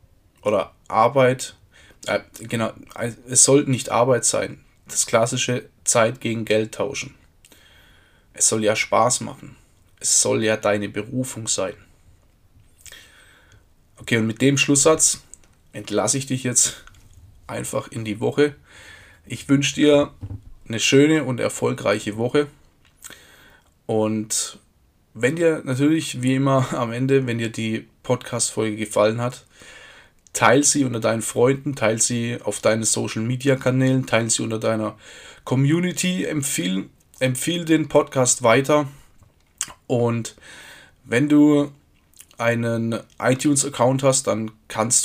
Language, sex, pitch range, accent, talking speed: German, male, 110-135 Hz, German, 115 wpm